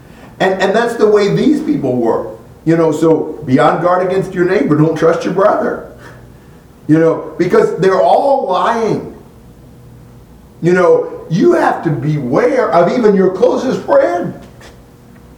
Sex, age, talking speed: male, 50-69, 150 wpm